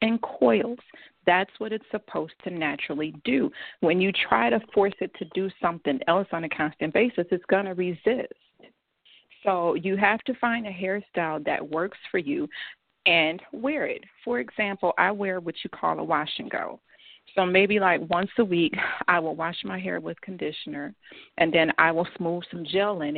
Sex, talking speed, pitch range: female, 185 wpm, 165-200 Hz